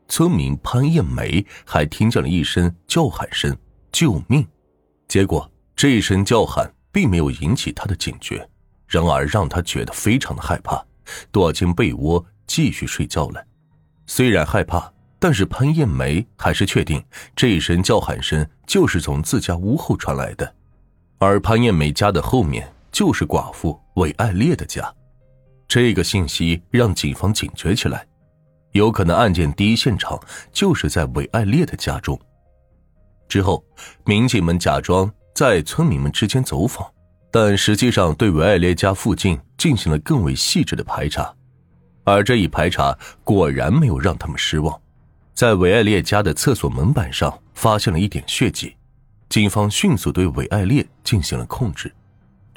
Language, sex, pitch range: Chinese, male, 85-115 Hz